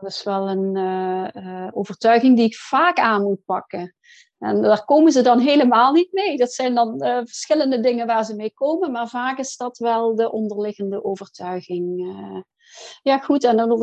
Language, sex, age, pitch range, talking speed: Dutch, female, 40-59, 210-255 Hz, 190 wpm